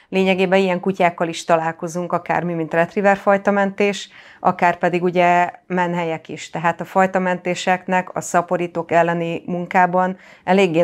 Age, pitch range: 30-49, 165-180 Hz